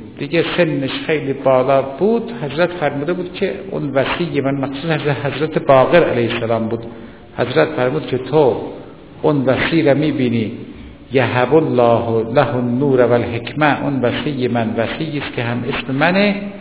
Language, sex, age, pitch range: Persian, male, 60-79, 125-180 Hz